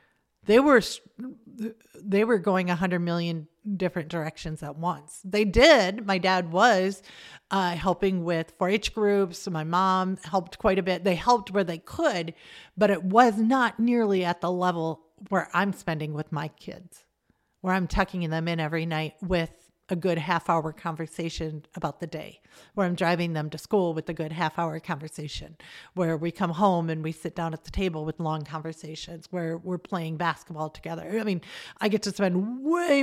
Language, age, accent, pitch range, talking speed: English, 40-59, American, 165-205 Hz, 185 wpm